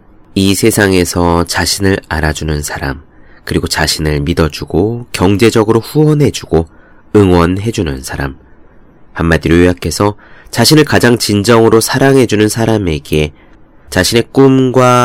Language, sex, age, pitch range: Korean, male, 30-49, 80-110 Hz